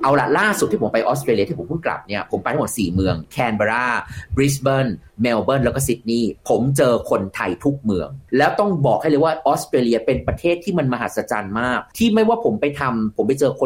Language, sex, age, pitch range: Thai, male, 30-49, 120-180 Hz